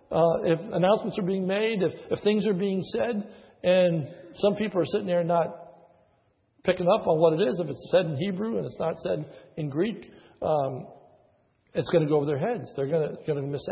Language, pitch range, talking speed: English, 130-190 Hz, 210 wpm